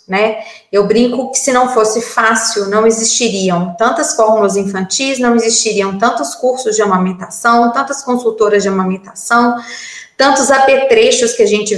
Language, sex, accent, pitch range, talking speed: Portuguese, female, Brazilian, 205-235 Hz, 145 wpm